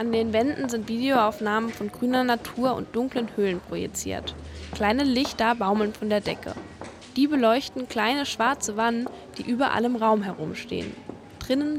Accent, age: German, 10-29